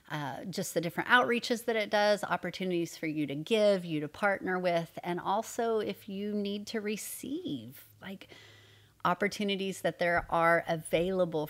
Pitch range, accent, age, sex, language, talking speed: 160-195 Hz, American, 30-49, female, English, 155 wpm